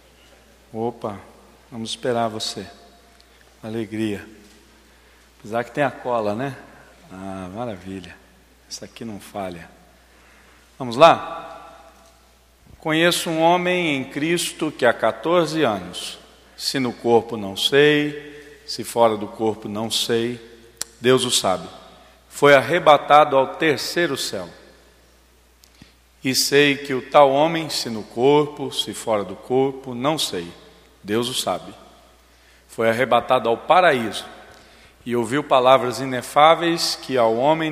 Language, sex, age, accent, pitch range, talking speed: Portuguese, male, 50-69, Brazilian, 105-140 Hz, 120 wpm